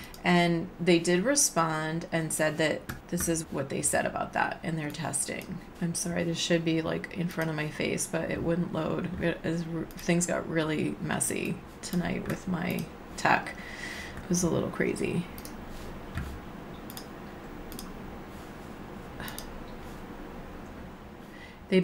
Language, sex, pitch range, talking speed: English, female, 160-180 Hz, 130 wpm